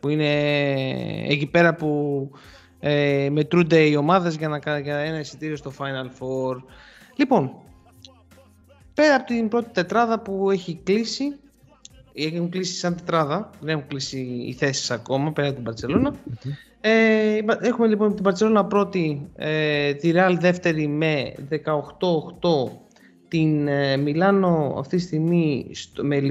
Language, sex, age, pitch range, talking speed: Greek, male, 20-39, 145-220 Hz, 125 wpm